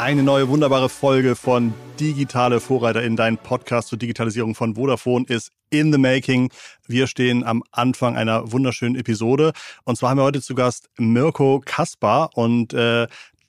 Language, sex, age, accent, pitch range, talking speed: German, male, 40-59, German, 115-135 Hz, 160 wpm